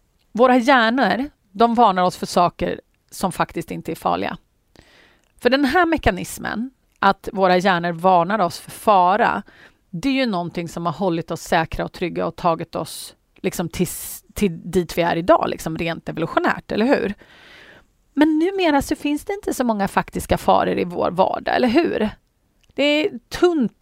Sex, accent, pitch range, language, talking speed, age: female, native, 180-280 Hz, Swedish, 170 wpm, 30-49